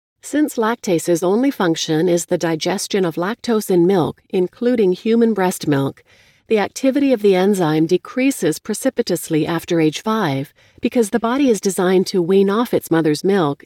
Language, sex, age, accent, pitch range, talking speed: English, female, 40-59, American, 160-220 Hz, 160 wpm